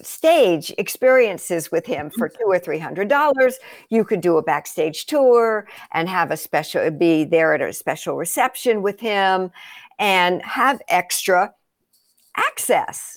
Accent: American